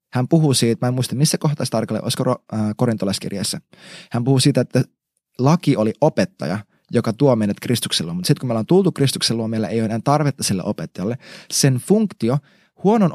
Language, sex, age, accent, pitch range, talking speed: Finnish, male, 20-39, native, 120-170 Hz, 180 wpm